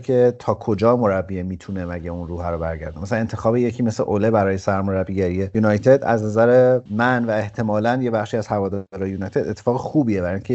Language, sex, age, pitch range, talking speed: Persian, male, 30-49, 100-125 Hz, 190 wpm